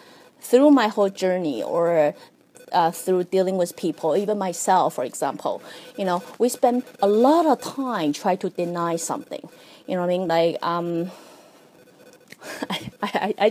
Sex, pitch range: female, 170-210 Hz